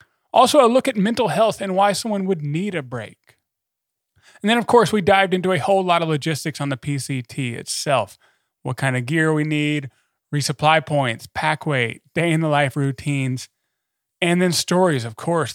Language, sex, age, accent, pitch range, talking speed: English, male, 30-49, American, 130-180 Hz, 180 wpm